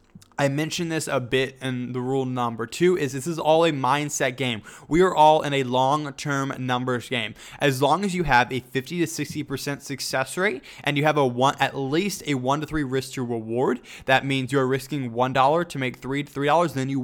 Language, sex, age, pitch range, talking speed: English, male, 20-39, 130-155 Hz, 235 wpm